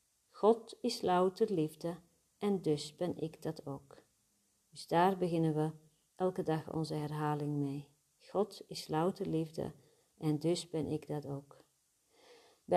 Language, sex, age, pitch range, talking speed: Dutch, female, 40-59, 150-185 Hz, 140 wpm